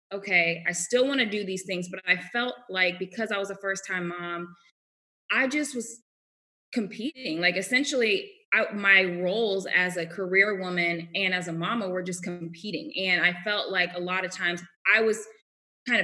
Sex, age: female, 20-39